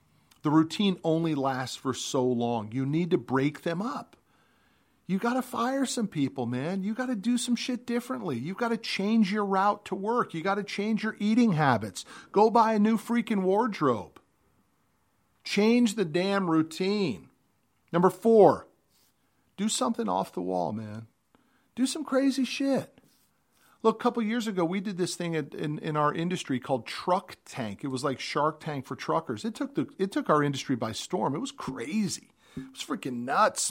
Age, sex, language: 40-59, male, English